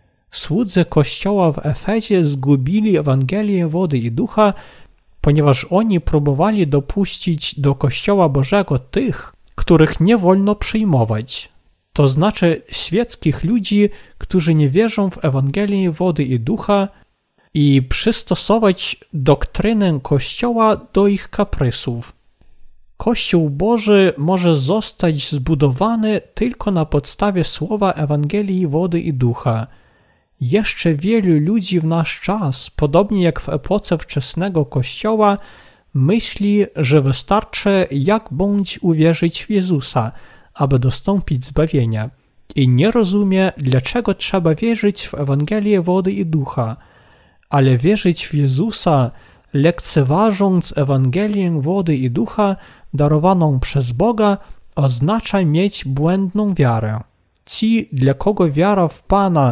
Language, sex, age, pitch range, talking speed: Polish, male, 40-59, 140-200 Hz, 110 wpm